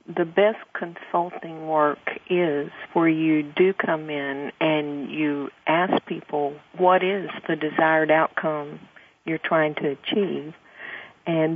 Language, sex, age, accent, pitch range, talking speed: English, female, 50-69, American, 150-170 Hz, 125 wpm